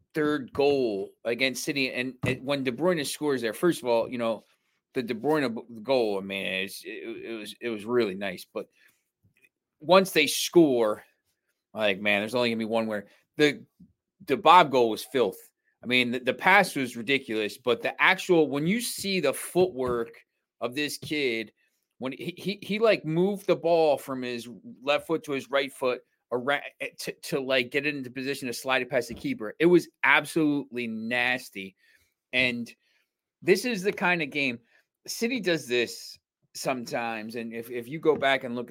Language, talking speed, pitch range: English, 180 wpm, 115-155 Hz